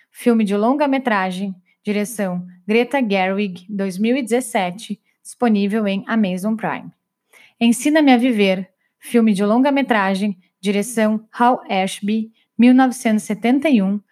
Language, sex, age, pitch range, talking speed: Portuguese, female, 20-39, 205-250 Hz, 90 wpm